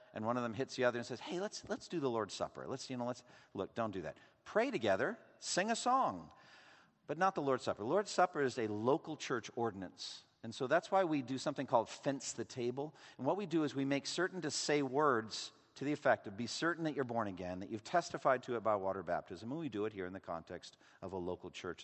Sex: male